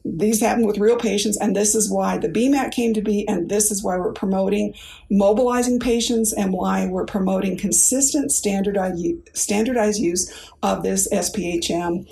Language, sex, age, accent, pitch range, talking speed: English, female, 50-69, American, 195-225 Hz, 160 wpm